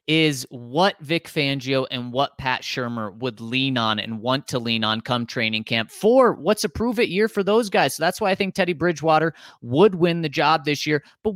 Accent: American